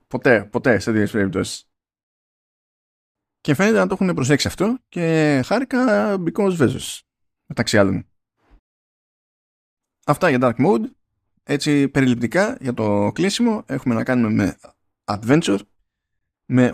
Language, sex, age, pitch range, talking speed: Greek, male, 20-39, 110-145 Hz, 120 wpm